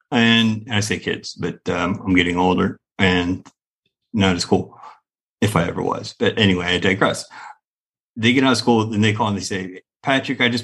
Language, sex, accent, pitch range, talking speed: English, male, American, 100-120 Hz, 195 wpm